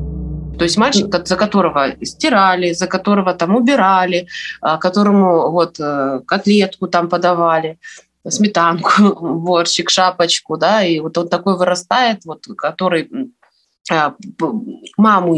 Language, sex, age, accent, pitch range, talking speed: Russian, female, 20-39, native, 160-200 Hz, 100 wpm